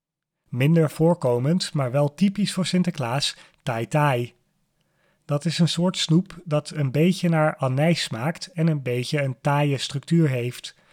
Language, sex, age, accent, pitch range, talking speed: Dutch, male, 30-49, Dutch, 135-165 Hz, 145 wpm